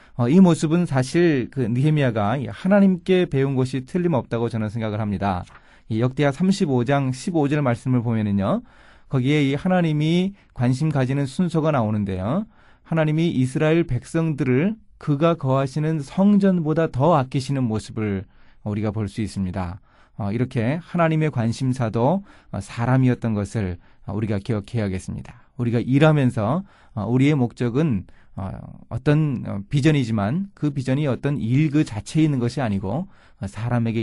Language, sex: Korean, male